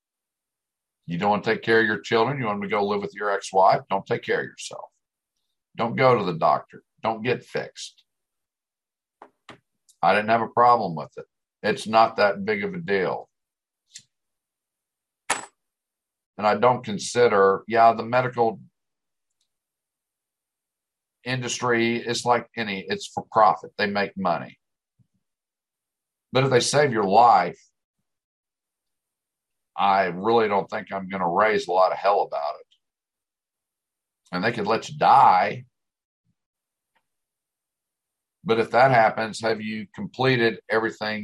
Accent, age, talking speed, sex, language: American, 50-69, 140 wpm, male, English